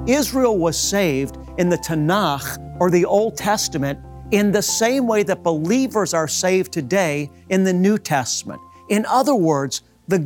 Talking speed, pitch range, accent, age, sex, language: 160 wpm, 155-205 Hz, American, 50-69, male, English